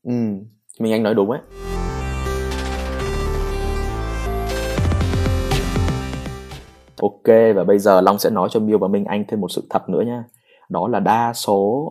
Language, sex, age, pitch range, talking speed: Vietnamese, male, 20-39, 90-115 Hz, 140 wpm